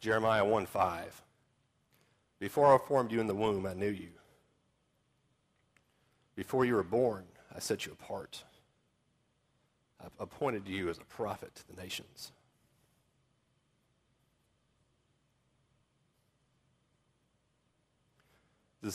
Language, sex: English, male